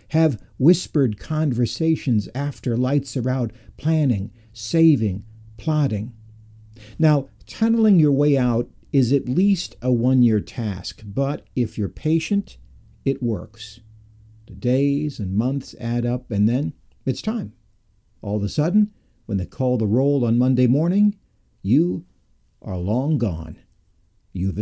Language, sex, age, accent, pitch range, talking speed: English, male, 60-79, American, 105-140 Hz, 130 wpm